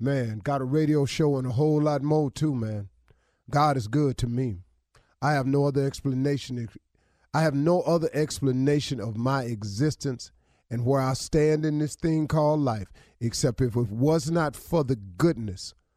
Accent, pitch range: American, 110-150 Hz